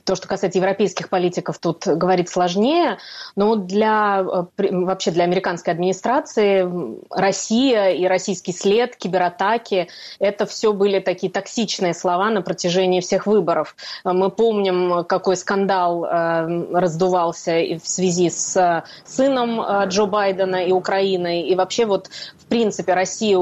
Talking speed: 125 wpm